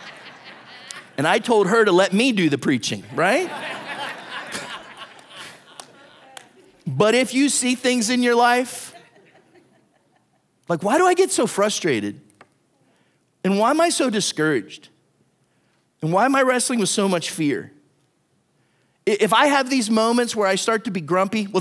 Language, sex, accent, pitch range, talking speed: English, male, American, 180-240 Hz, 145 wpm